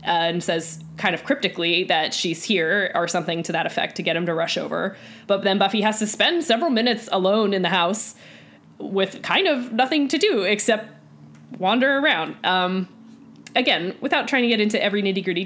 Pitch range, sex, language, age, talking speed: 170-210 Hz, female, English, 20-39, 200 wpm